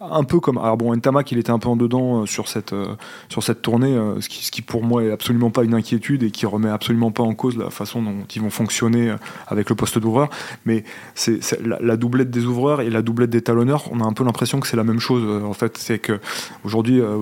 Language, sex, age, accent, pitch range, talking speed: French, male, 20-39, French, 110-125 Hz, 275 wpm